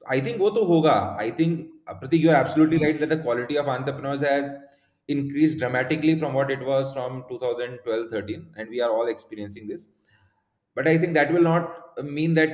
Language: Hindi